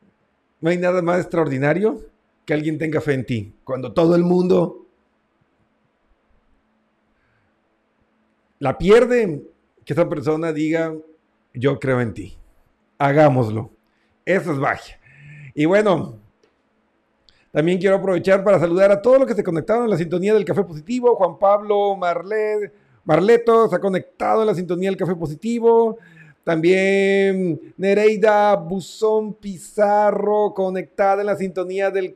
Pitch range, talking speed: 155-200 Hz, 130 wpm